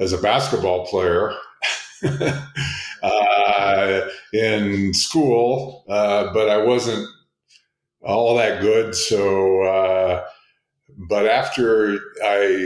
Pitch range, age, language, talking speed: 100-125 Hz, 50-69, Slovak, 90 wpm